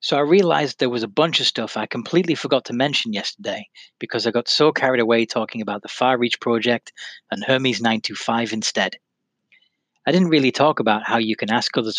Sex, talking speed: male, 205 wpm